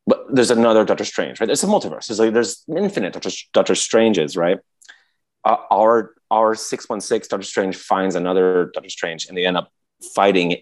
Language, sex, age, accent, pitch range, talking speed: English, male, 30-49, American, 90-115 Hz, 185 wpm